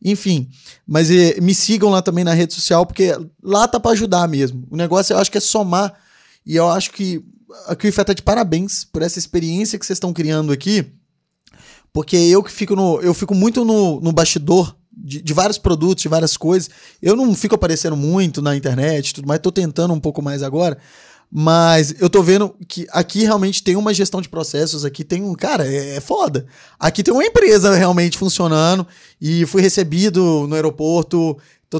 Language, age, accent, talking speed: Portuguese, 20-39, Brazilian, 195 wpm